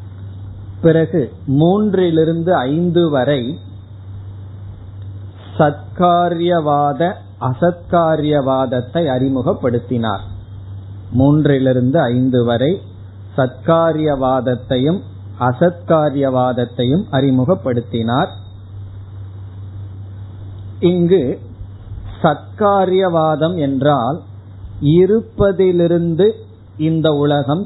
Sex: male